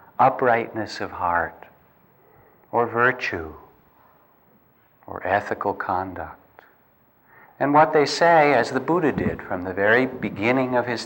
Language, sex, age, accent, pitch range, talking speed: English, male, 50-69, American, 100-130 Hz, 120 wpm